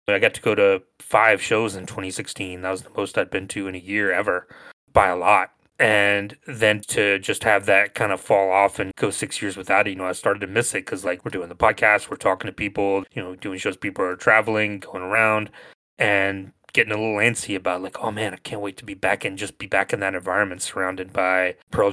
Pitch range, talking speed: 95-110 Hz, 245 wpm